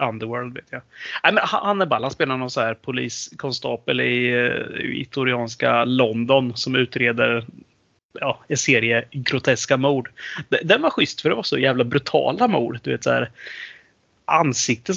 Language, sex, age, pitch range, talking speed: Swedish, male, 30-49, 125-155 Hz, 145 wpm